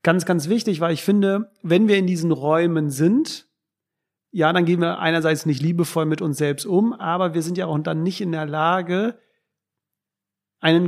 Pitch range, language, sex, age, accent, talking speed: 160-190 Hz, German, male, 40-59, German, 190 wpm